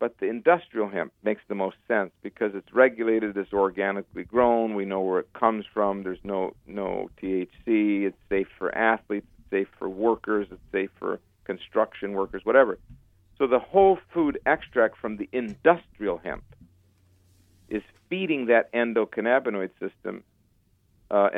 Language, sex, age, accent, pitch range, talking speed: English, male, 50-69, American, 95-125 Hz, 150 wpm